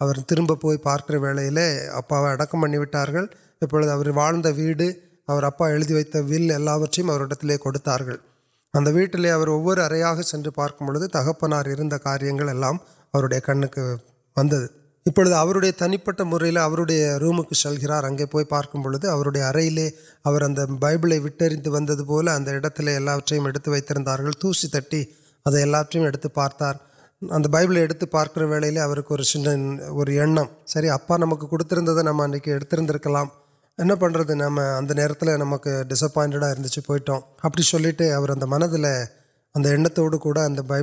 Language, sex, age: Urdu, male, 30-49